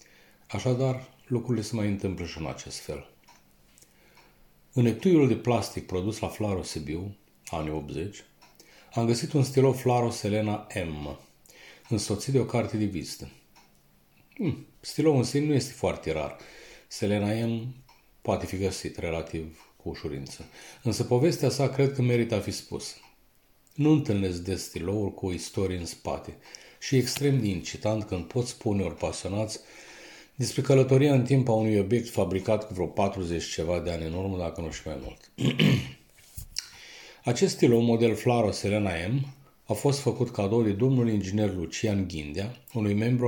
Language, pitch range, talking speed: Romanian, 90-125 Hz, 155 wpm